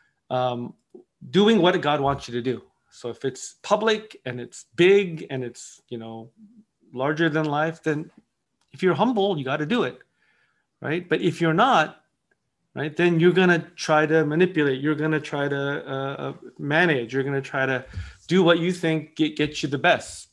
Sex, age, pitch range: male, 30-49, 120-155 Hz